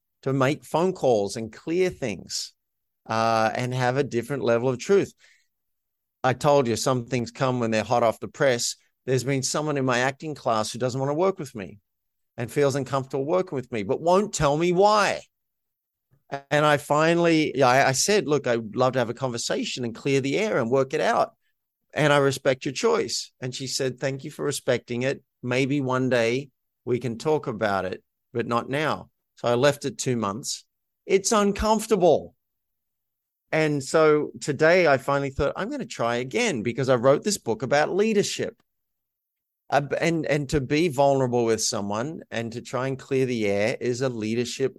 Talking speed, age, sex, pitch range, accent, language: 190 wpm, 50-69, male, 120-150 Hz, Australian, English